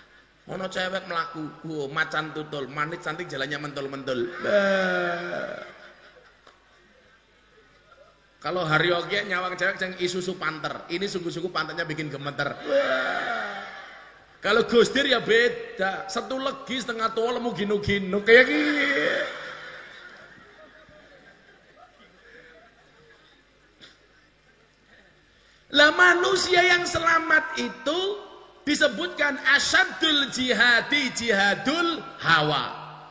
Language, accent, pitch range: Indonesian, native, 195-320 Hz